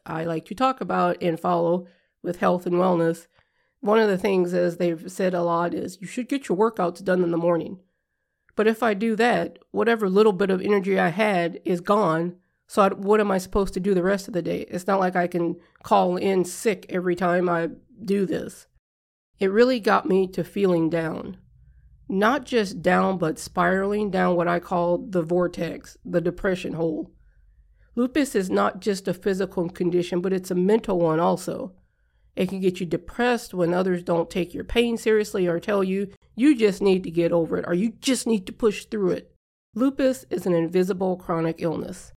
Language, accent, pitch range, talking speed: English, American, 175-205 Hz, 200 wpm